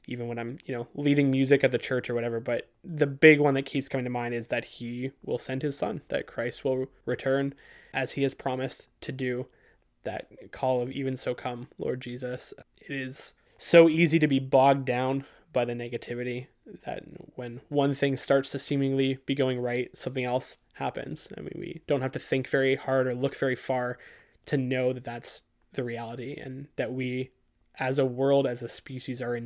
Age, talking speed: 20-39, 205 wpm